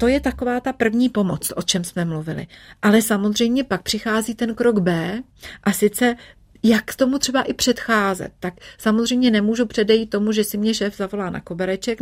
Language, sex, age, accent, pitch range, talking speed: Czech, female, 30-49, native, 180-220 Hz, 185 wpm